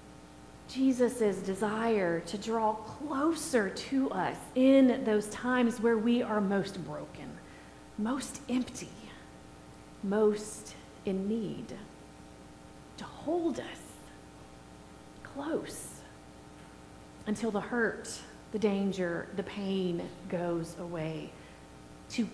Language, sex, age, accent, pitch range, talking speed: English, female, 30-49, American, 170-245 Hz, 90 wpm